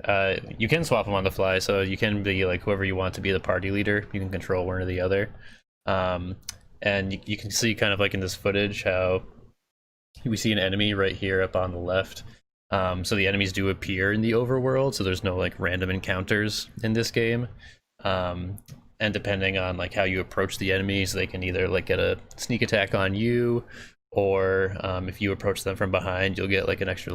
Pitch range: 95-110 Hz